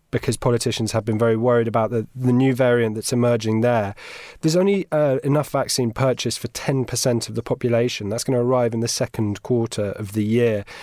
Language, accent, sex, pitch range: English, British, male, 115-145 Hz